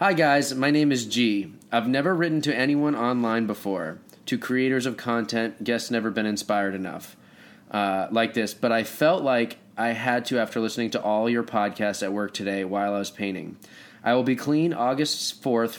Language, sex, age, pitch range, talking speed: English, male, 20-39, 105-125 Hz, 195 wpm